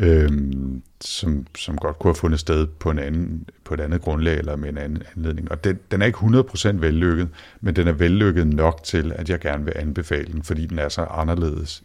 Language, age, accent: Danish, 60-79, native